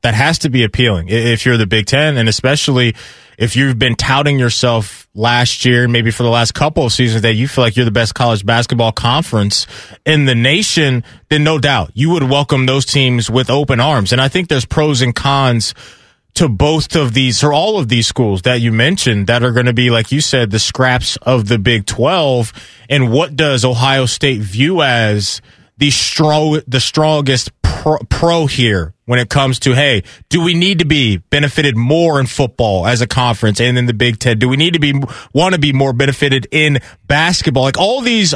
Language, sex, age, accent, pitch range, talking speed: English, male, 20-39, American, 120-150 Hz, 210 wpm